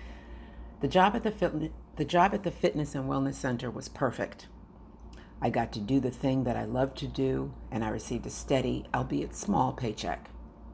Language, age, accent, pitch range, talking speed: English, 50-69, American, 110-150 Hz, 190 wpm